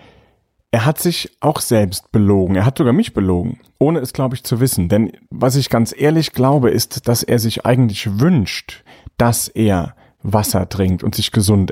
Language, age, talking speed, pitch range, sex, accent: German, 30-49, 185 wpm, 105-140 Hz, male, German